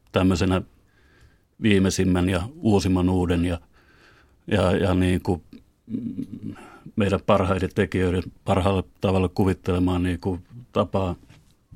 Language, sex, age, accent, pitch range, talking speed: Finnish, male, 30-49, native, 95-105 Hz, 85 wpm